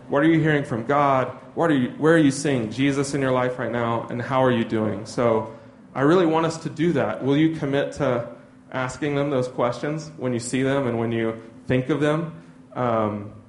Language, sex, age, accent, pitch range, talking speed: English, male, 30-49, American, 130-160 Hz, 225 wpm